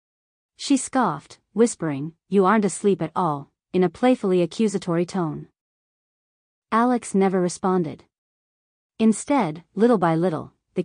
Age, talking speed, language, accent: 30-49, 115 wpm, English, American